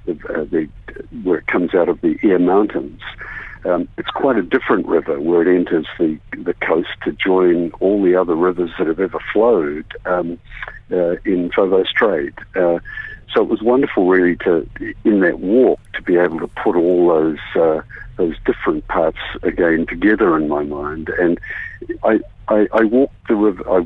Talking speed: 180 wpm